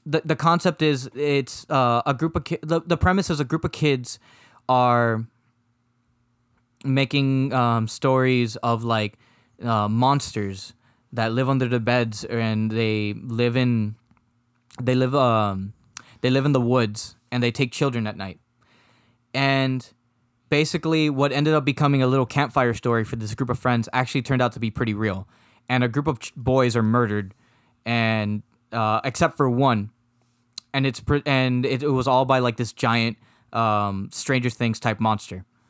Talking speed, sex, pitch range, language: 170 wpm, male, 115-135 Hz, English